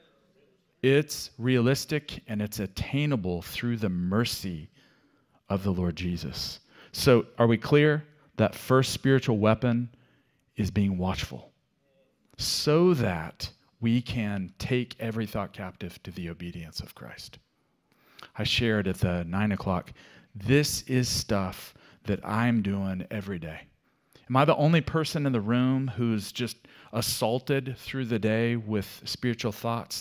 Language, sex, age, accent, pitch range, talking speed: English, male, 40-59, American, 100-130 Hz, 135 wpm